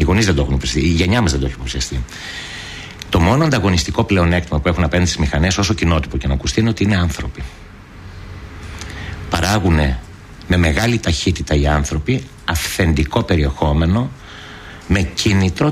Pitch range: 75-100 Hz